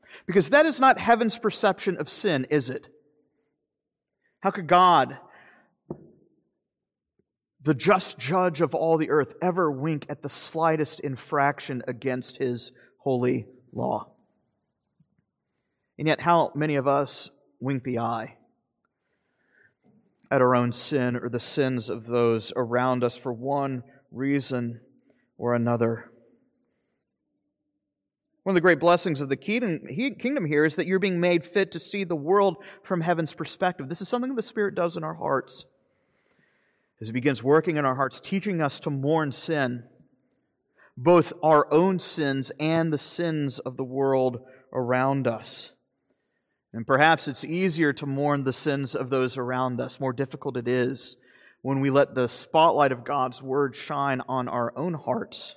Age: 40-59